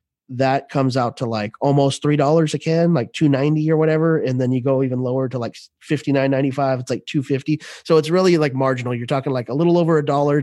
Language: English